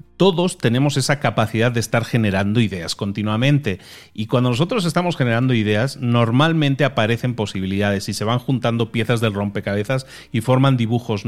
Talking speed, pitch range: 150 wpm, 110-145 Hz